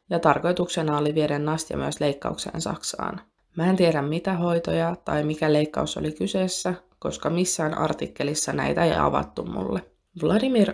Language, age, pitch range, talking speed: Finnish, 20-39, 150-195 Hz, 145 wpm